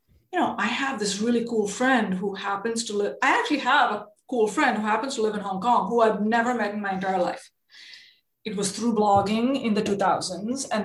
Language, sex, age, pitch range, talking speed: English, female, 20-39, 185-220 Hz, 225 wpm